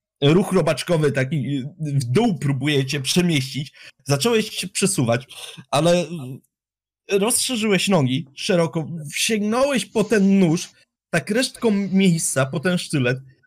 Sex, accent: male, native